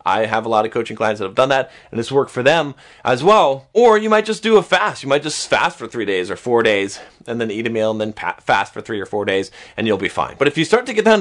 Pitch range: 110-150 Hz